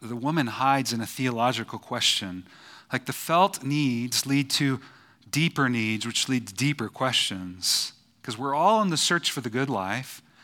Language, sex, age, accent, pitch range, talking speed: English, male, 40-59, American, 120-180 Hz, 170 wpm